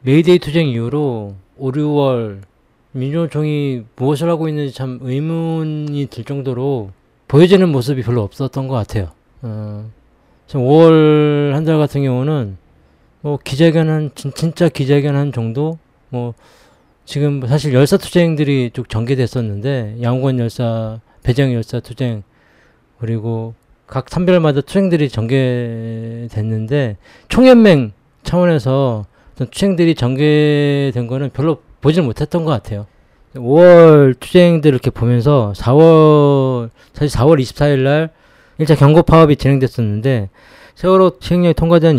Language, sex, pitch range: Korean, male, 115-150 Hz